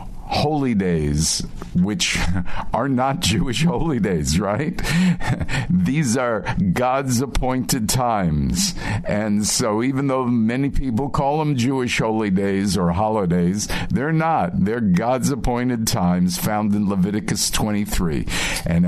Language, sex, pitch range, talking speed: English, male, 90-135 Hz, 120 wpm